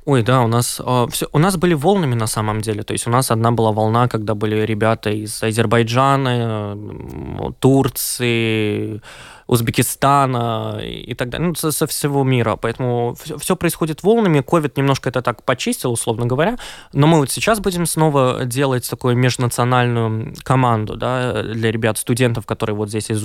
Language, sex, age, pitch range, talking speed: Ukrainian, male, 20-39, 115-145 Hz, 165 wpm